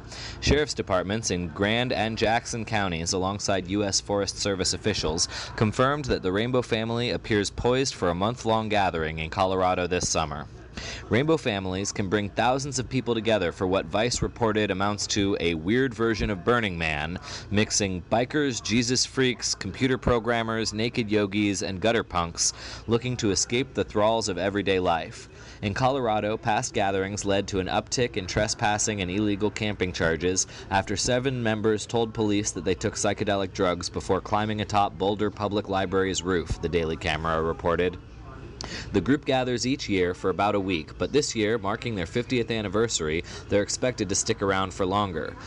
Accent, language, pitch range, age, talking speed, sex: American, English, 95-115 Hz, 30-49, 165 wpm, male